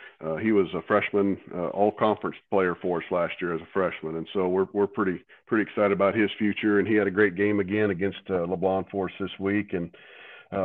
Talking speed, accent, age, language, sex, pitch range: 230 wpm, American, 40-59, English, male, 95-105 Hz